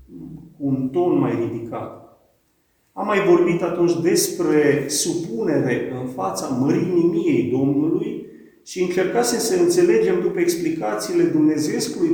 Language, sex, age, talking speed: Romanian, male, 40-59, 110 wpm